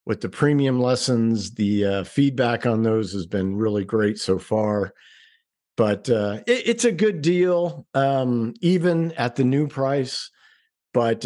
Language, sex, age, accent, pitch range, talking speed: English, male, 50-69, American, 100-130 Hz, 155 wpm